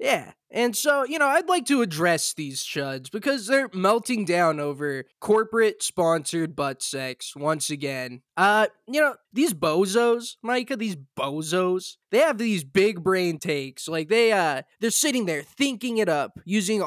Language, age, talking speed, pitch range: English, 20-39, 160 wpm, 180-295 Hz